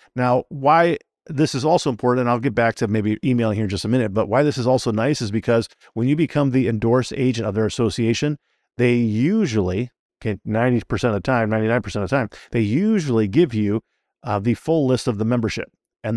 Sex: male